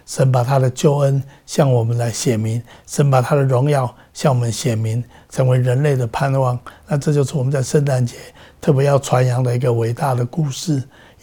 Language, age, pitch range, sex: Chinese, 60-79, 125-145 Hz, male